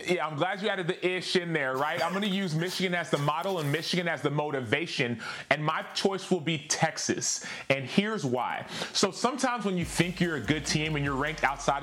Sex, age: male, 30-49